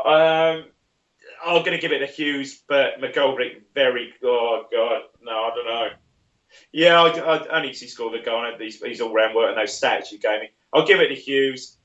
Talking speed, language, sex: 195 wpm, English, male